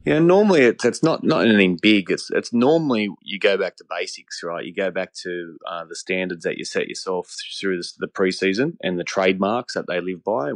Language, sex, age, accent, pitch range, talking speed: English, male, 20-39, Australian, 90-95 Hz, 220 wpm